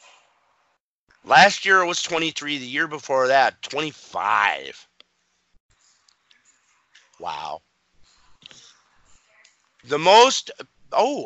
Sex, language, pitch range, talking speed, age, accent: male, English, 105-145 Hz, 85 wpm, 50-69, American